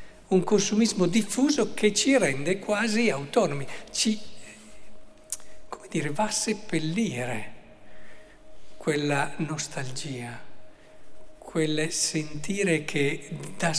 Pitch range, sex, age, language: 145-190 Hz, male, 60-79, Italian